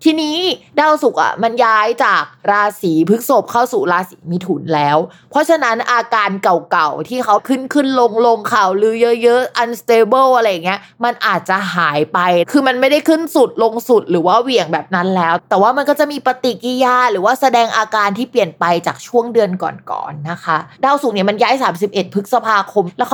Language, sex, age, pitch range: Thai, female, 20-39, 185-250 Hz